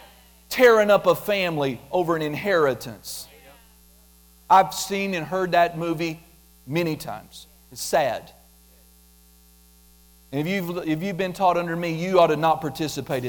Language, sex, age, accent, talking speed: English, male, 40-59, American, 135 wpm